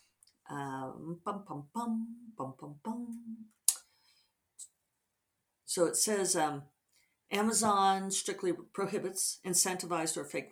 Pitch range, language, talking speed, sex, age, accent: 165-240 Hz, English, 95 wpm, female, 50-69, American